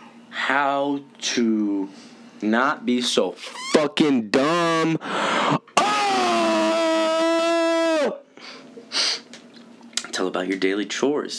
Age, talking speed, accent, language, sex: 20-39, 70 wpm, American, English, male